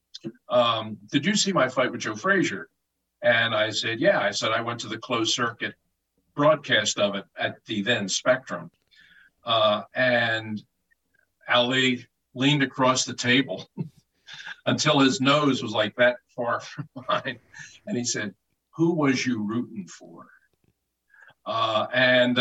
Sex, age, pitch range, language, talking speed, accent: male, 50-69, 115-150 Hz, English, 145 wpm, American